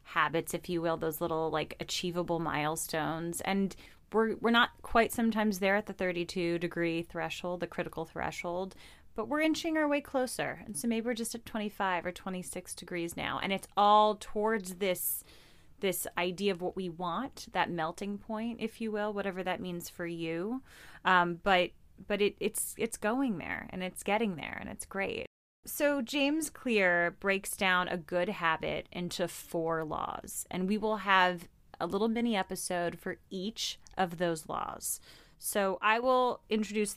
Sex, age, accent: female, 30-49, American